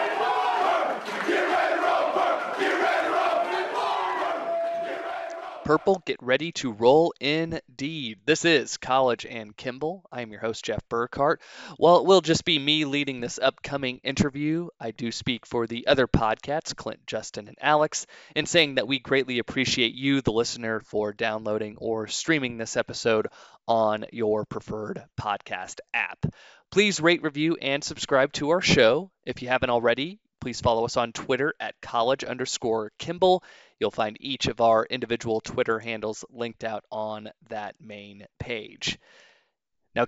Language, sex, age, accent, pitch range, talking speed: English, male, 20-39, American, 115-155 Hz, 140 wpm